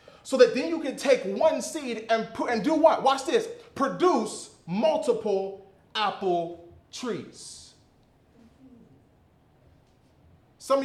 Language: English